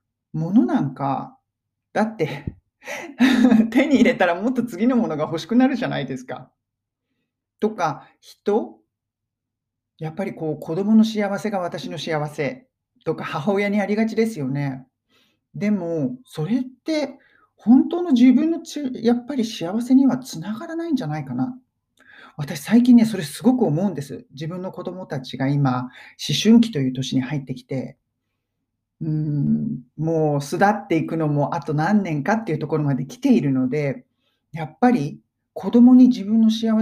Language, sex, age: Japanese, male, 40-59